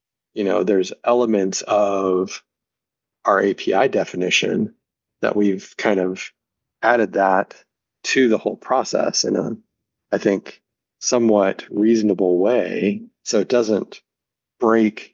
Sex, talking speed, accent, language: male, 115 wpm, American, English